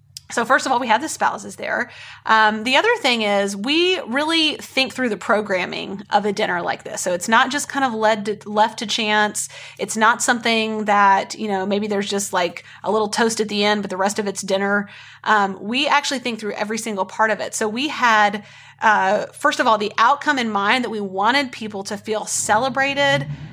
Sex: female